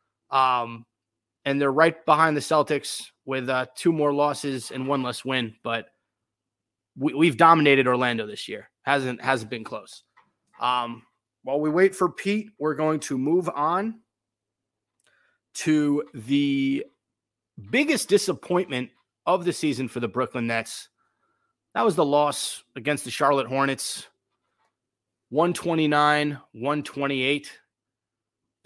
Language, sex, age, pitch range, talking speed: English, male, 30-49, 125-160 Hz, 120 wpm